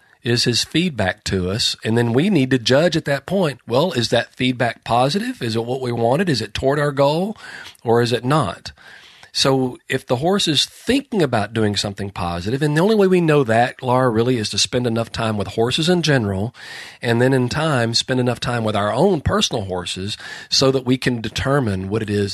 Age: 40-59